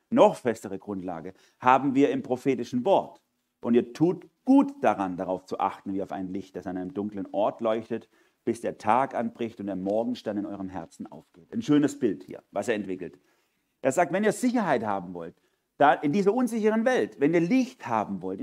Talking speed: 200 wpm